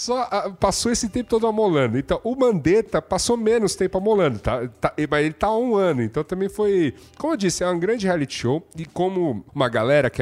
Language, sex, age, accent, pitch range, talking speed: Portuguese, male, 40-59, Brazilian, 125-180 Hz, 210 wpm